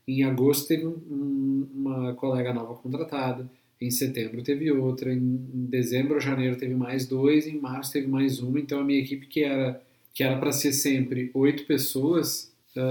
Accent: Brazilian